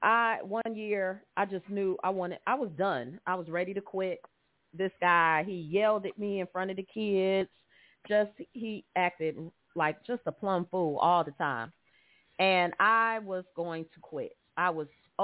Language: English